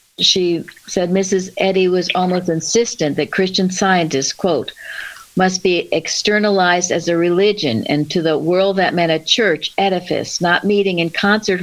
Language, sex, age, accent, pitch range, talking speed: English, female, 60-79, American, 155-185 Hz, 155 wpm